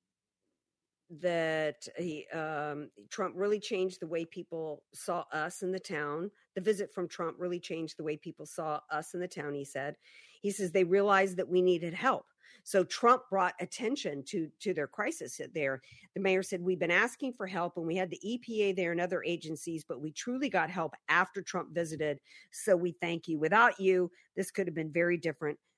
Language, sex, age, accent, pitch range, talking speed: English, female, 50-69, American, 150-185 Hz, 195 wpm